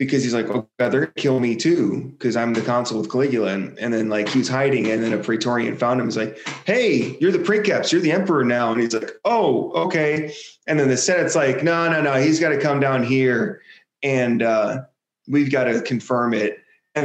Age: 30-49